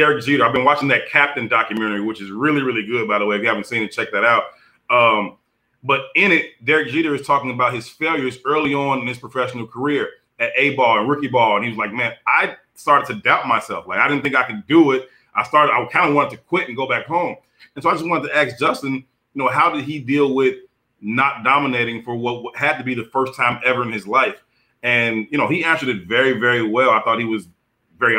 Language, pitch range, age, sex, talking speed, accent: English, 120-145 Hz, 30-49, male, 255 wpm, American